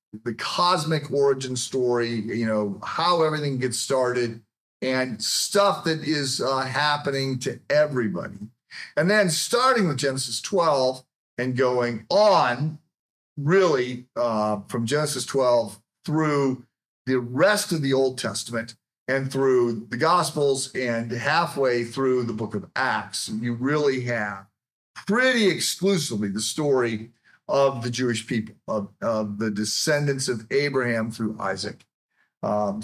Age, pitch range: 40-59, 115-145 Hz